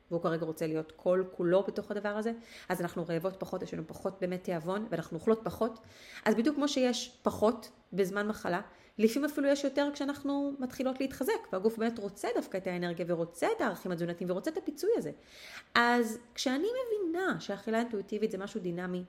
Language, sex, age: Hebrew, female, 30-49